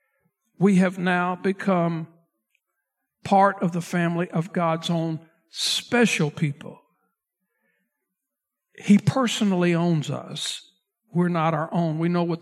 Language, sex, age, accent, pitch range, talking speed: English, male, 60-79, American, 155-190 Hz, 115 wpm